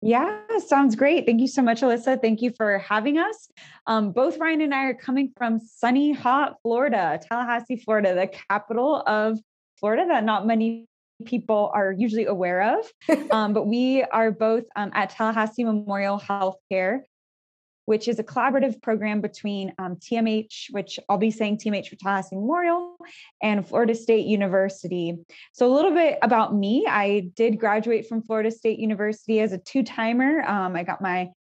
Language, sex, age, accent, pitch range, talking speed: English, female, 20-39, American, 200-245 Hz, 165 wpm